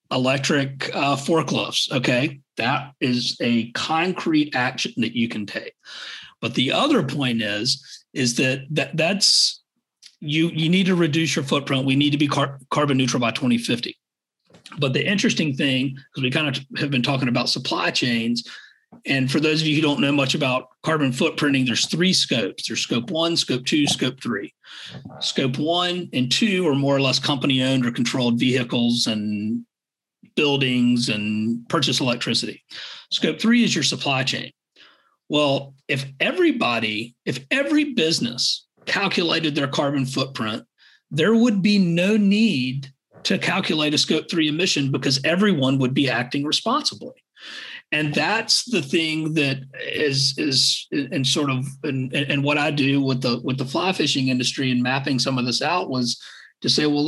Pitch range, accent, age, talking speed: 130-160 Hz, American, 40-59, 165 wpm